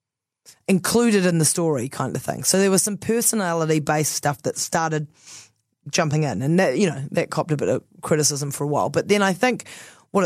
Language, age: English, 20-39